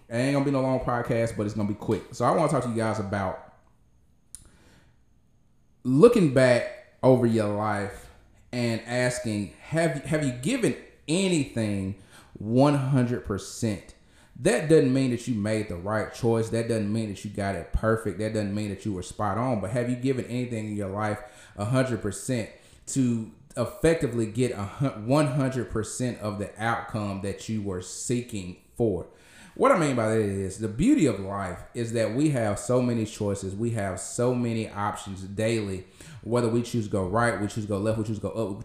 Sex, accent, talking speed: male, American, 195 wpm